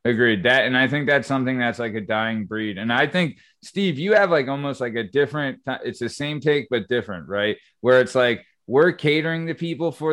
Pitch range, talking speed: 120-140 Hz, 225 wpm